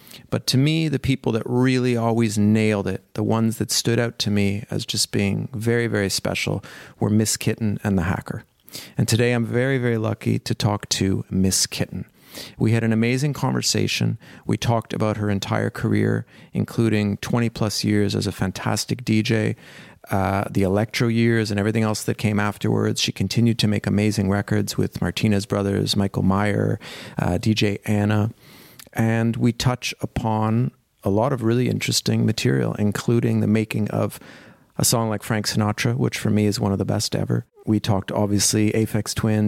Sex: male